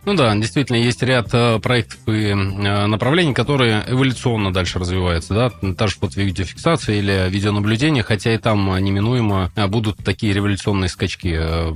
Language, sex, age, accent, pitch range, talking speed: Russian, male, 20-39, native, 100-130 Hz, 150 wpm